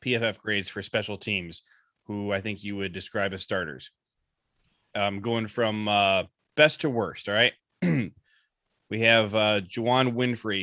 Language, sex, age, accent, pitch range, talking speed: English, male, 20-39, American, 100-125 Hz, 160 wpm